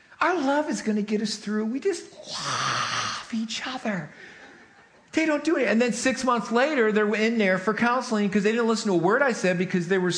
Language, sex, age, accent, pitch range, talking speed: English, male, 40-59, American, 170-275 Hz, 230 wpm